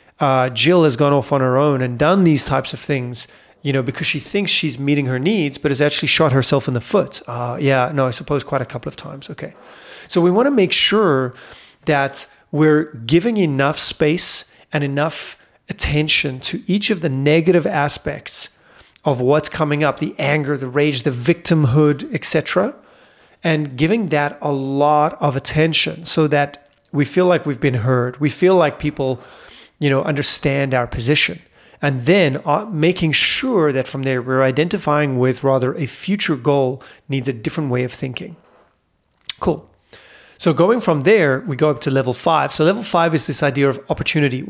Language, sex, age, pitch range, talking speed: English, male, 30-49, 135-160 Hz, 185 wpm